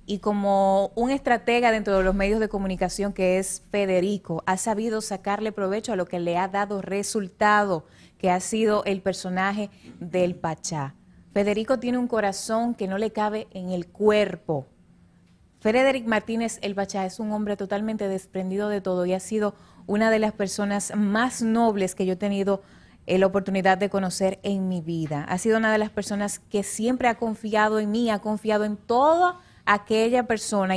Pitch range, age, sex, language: 190-220 Hz, 20-39, female, English